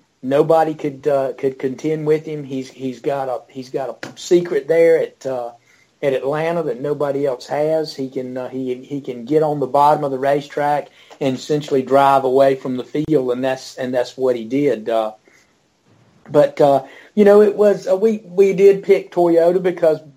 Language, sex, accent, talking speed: English, male, American, 195 wpm